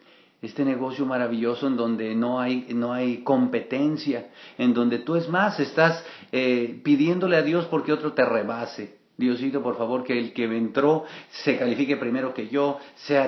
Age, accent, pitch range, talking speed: 40-59, Mexican, 110-135 Hz, 170 wpm